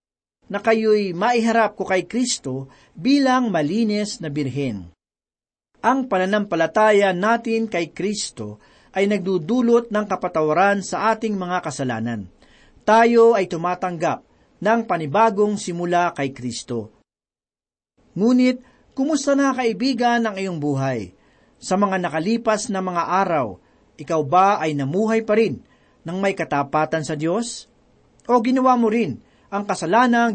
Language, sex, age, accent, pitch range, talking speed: Filipino, male, 40-59, native, 155-225 Hz, 120 wpm